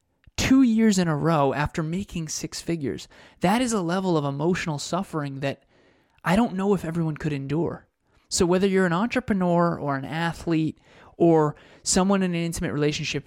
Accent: American